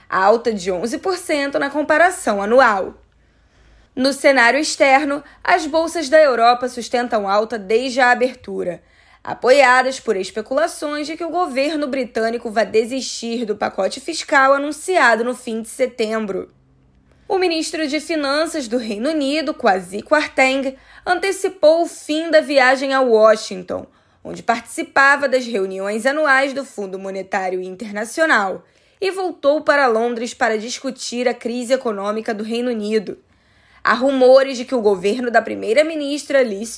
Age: 10-29